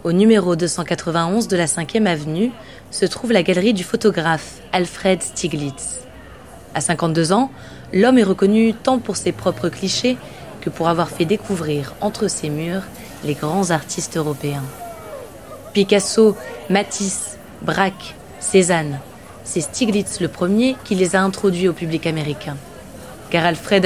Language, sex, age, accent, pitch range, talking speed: French, female, 20-39, French, 160-205 Hz, 140 wpm